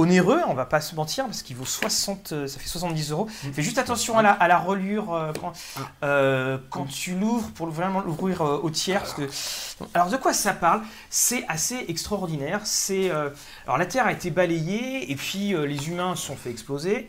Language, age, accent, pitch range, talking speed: French, 40-59, French, 140-200 Hz, 205 wpm